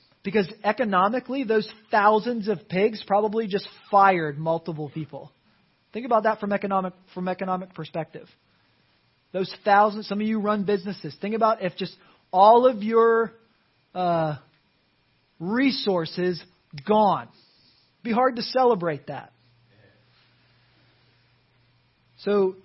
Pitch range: 165-215 Hz